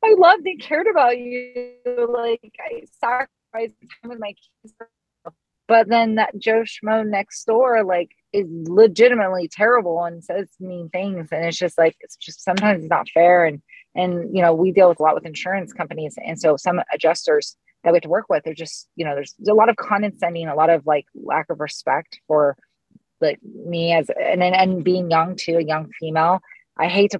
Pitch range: 170-220 Hz